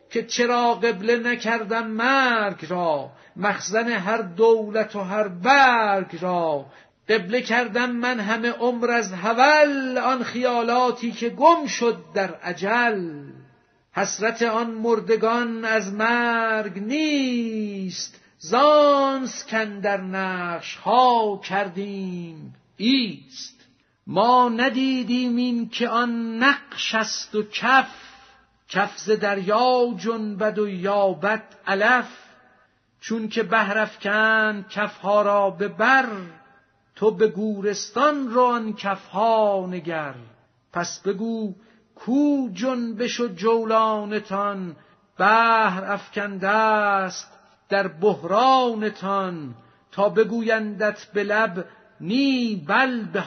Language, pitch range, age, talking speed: Persian, 200-240 Hz, 50-69, 95 wpm